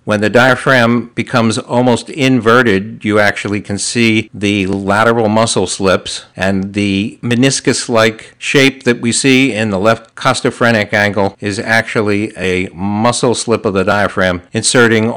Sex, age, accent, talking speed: male, 60-79, American, 140 wpm